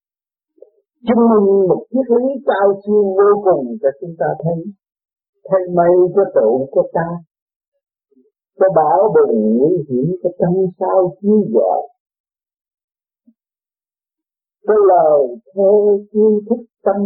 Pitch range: 170-280 Hz